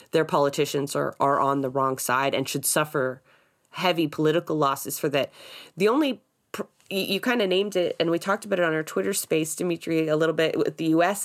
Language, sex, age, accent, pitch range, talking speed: English, female, 20-39, American, 155-195 Hz, 215 wpm